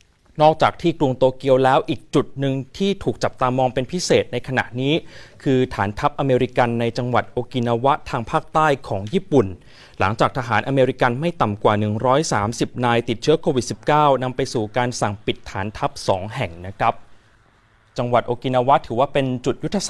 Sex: male